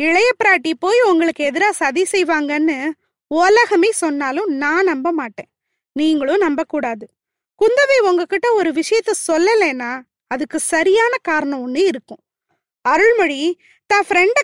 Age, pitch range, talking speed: 20-39, 290-400 Hz, 110 wpm